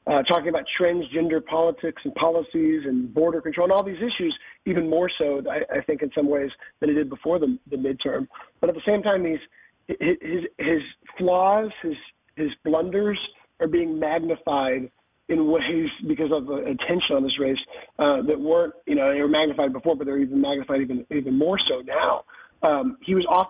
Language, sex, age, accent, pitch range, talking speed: English, male, 30-49, American, 150-195 Hz, 195 wpm